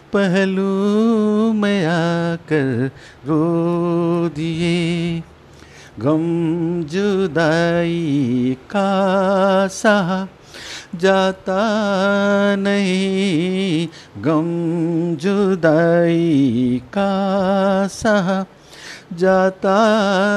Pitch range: 170-210 Hz